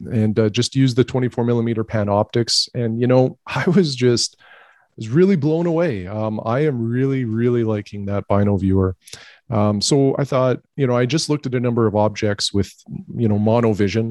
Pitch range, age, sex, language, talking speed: 110-130 Hz, 40-59, male, English, 195 wpm